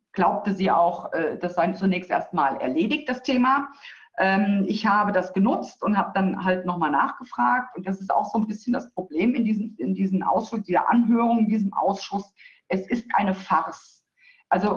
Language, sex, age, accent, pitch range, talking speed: German, female, 50-69, German, 185-235 Hz, 180 wpm